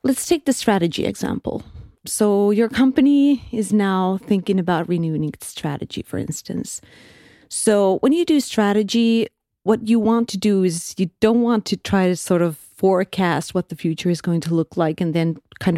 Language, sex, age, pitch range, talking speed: English, female, 30-49, 170-215 Hz, 185 wpm